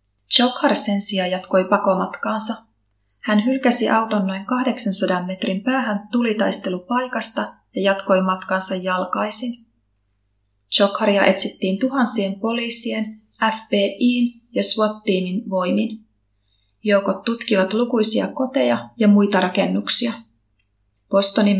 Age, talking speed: 30-49, 90 wpm